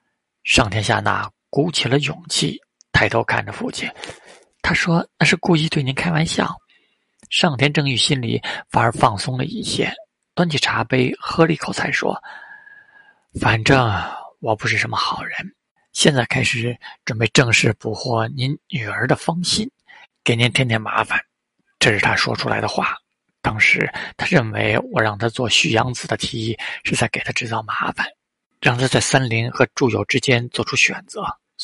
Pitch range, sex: 120-165 Hz, male